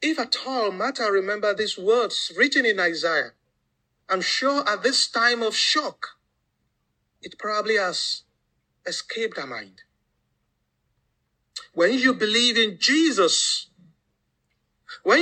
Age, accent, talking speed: 50-69, Nigerian, 115 wpm